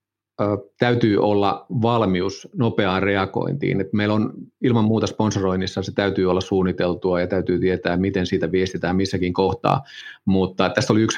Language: Finnish